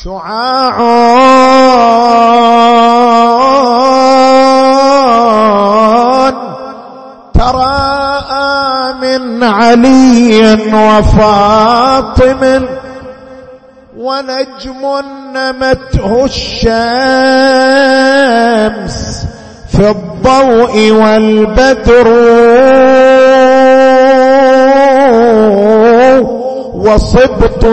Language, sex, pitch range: Arabic, male, 215-265 Hz